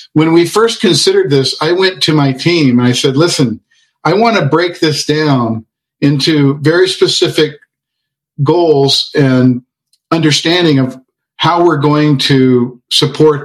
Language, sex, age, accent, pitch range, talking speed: English, male, 50-69, American, 135-160 Hz, 145 wpm